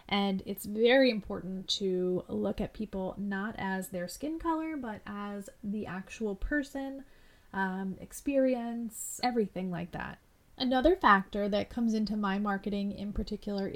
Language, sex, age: English, female, 30-49